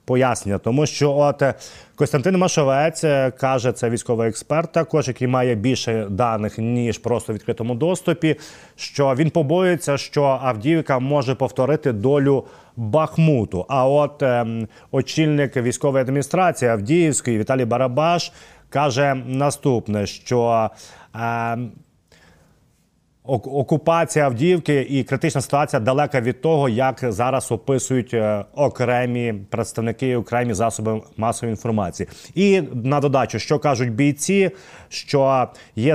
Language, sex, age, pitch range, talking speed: Ukrainian, male, 30-49, 115-145 Hz, 110 wpm